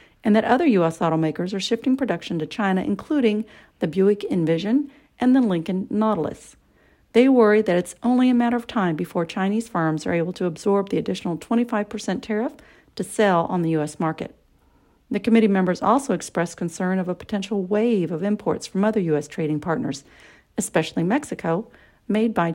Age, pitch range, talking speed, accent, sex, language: 40-59, 170-225 Hz, 175 wpm, American, female, English